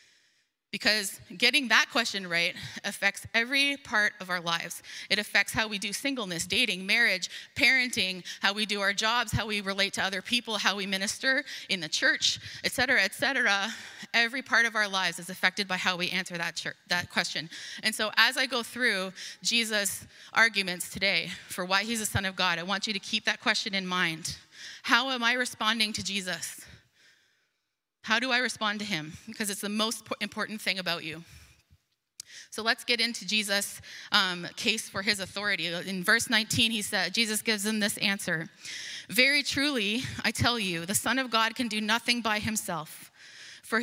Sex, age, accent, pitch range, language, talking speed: female, 20-39, American, 190-235 Hz, English, 185 wpm